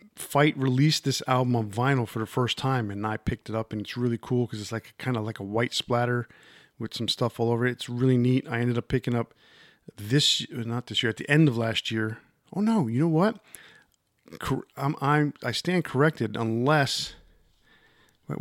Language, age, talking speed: English, 40-59, 210 wpm